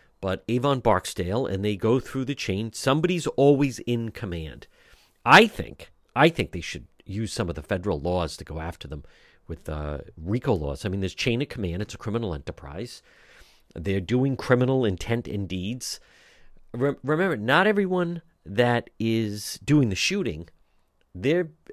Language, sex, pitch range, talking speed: English, male, 95-135 Hz, 165 wpm